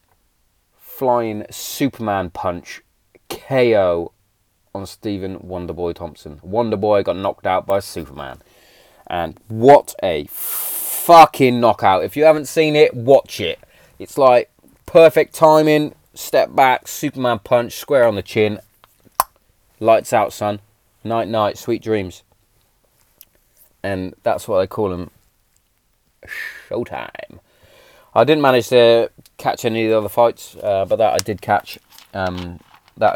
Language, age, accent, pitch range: English, 20-39, British, 95-120 Hz